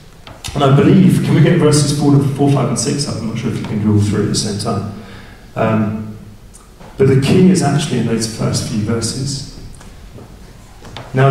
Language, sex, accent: English, male, British